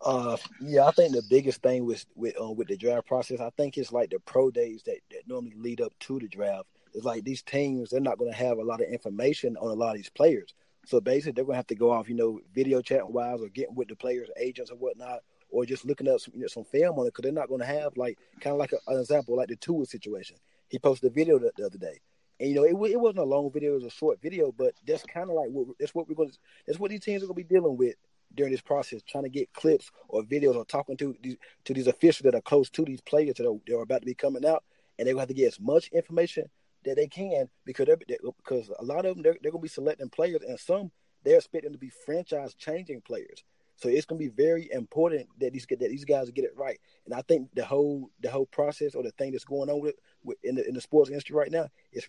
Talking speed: 280 wpm